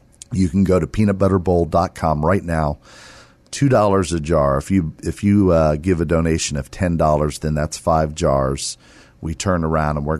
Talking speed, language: 170 wpm, English